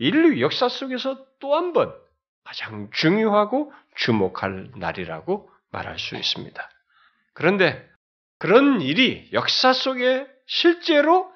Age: 40-59